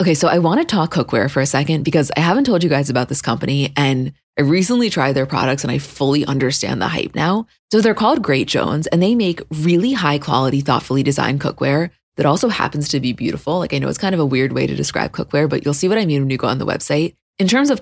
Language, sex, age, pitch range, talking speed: English, female, 20-39, 140-185 Hz, 265 wpm